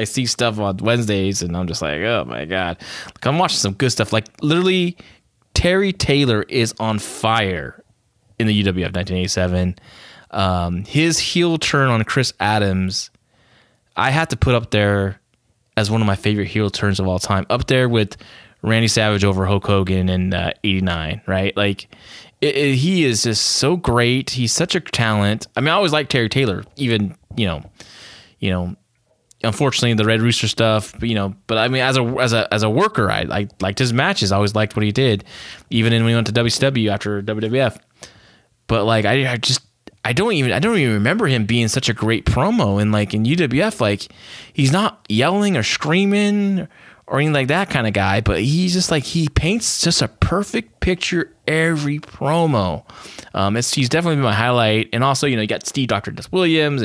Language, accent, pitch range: English, American, 100-135 Hz